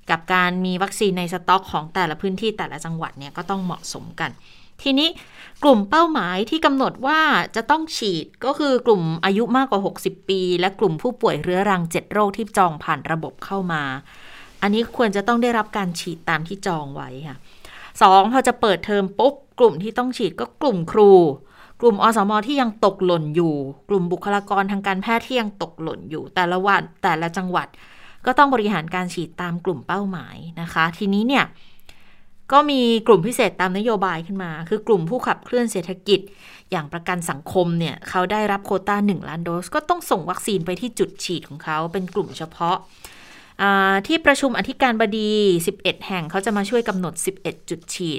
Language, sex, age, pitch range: Thai, female, 20-39, 175-220 Hz